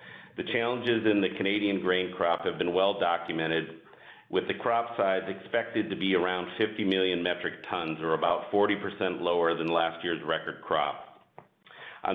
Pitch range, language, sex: 90-105 Hz, English, male